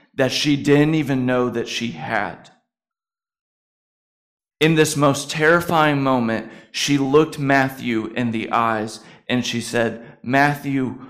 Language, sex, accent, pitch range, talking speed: English, male, American, 115-150 Hz, 125 wpm